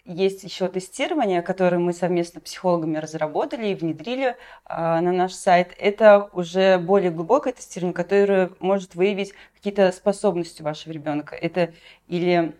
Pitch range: 165-195 Hz